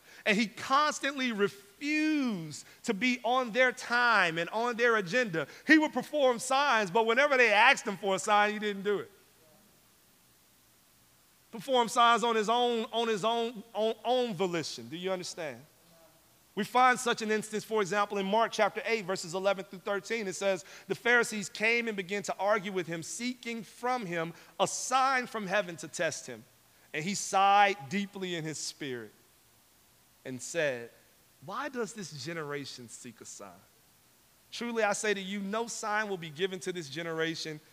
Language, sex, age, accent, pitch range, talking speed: English, male, 40-59, American, 160-225 Hz, 165 wpm